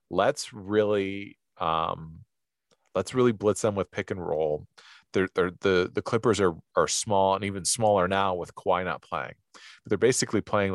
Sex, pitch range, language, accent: male, 90-110 Hz, English, American